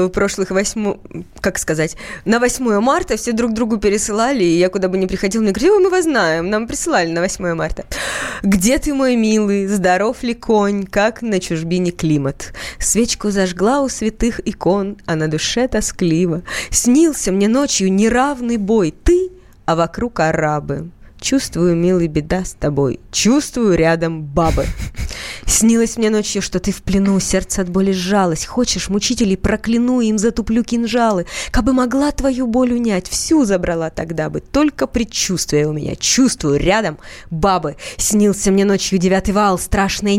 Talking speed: 155 wpm